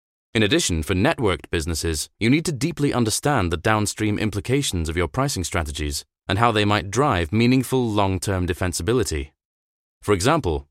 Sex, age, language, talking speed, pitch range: male, 30-49, English, 150 wpm, 90-130 Hz